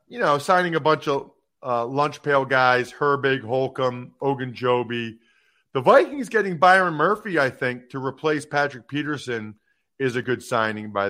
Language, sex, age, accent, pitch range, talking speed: English, male, 40-59, American, 130-175 Hz, 160 wpm